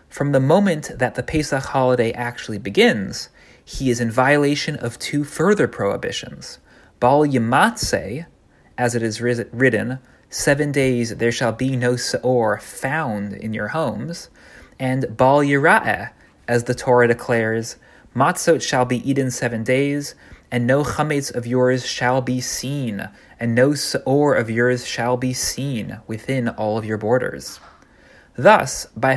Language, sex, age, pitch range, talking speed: English, male, 30-49, 115-140 Hz, 145 wpm